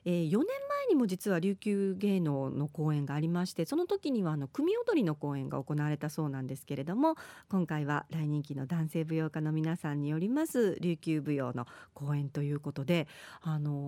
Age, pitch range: 40-59, 155-225 Hz